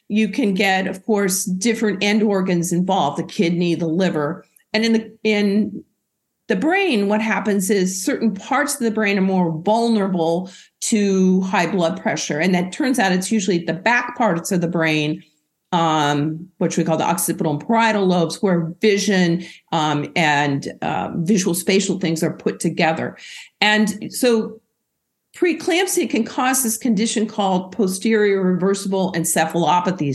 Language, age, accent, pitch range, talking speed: English, 50-69, American, 185-225 Hz, 155 wpm